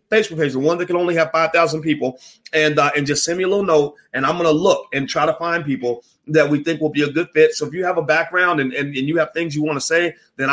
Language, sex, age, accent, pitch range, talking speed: English, male, 30-49, American, 145-175 Hz, 310 wpm